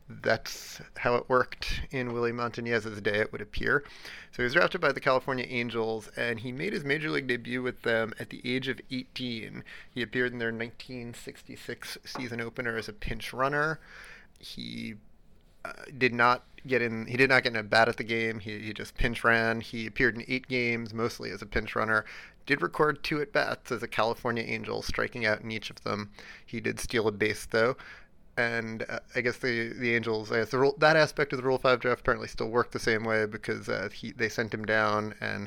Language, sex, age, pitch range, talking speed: English, male, 30-49, 110-130 Hz, 215 wpm